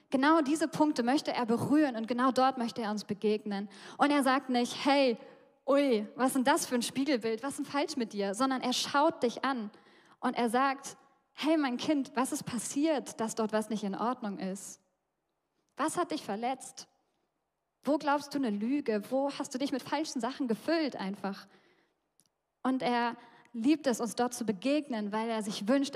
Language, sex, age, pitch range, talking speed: German, female, 10-29, 220-265 Hz, 190 wpm